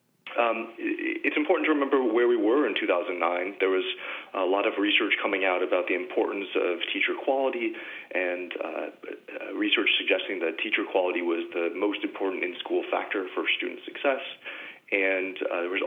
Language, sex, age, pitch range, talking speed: English, male, 30-49, 295-395 Hz, 165 wpm